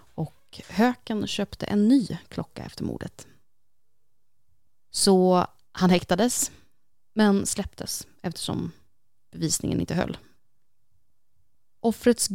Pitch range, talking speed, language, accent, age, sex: 160-215 Hz, 85 wpm, English, Swedish, 20-39, female